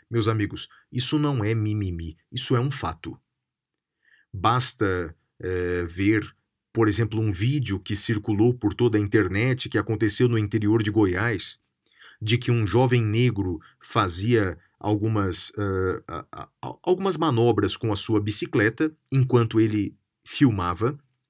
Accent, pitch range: Brazilian, 100-130 Hz